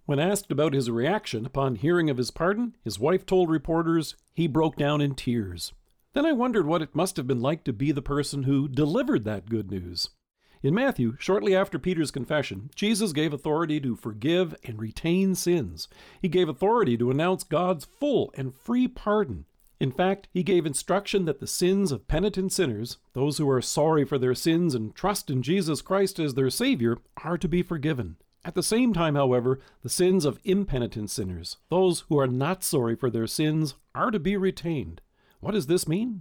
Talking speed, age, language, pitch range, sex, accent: 195 wpm, 50-69, English, 135-190 Hz, male, American